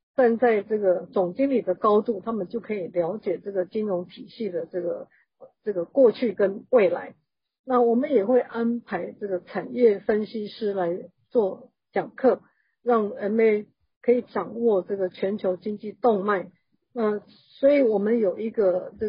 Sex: female